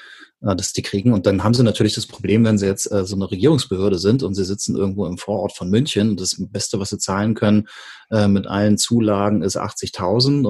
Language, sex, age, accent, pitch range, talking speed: German, male, 30-49, German, 100-115 Hz, 230 wpm